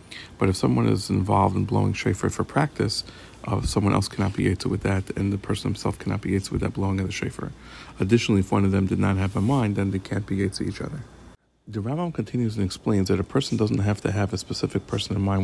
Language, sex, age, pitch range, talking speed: English, male, 40-59, 95-110 Hz, 255 wpm